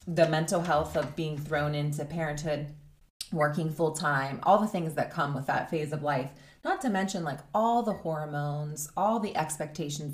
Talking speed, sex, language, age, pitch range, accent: 185 wpm, female, English, 20-39, 140-165 Hz, American